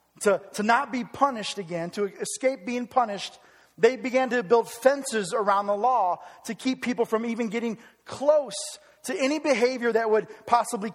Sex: male